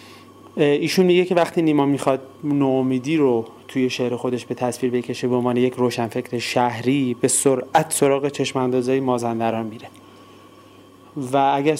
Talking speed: 145 wpm